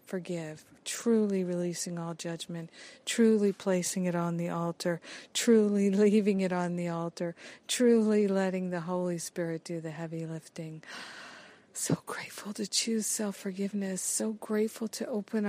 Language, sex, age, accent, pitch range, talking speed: English, female, 50-69, American, 175-205 Hz, 135 wpm